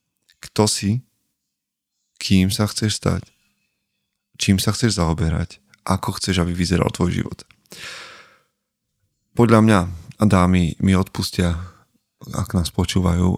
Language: Slovak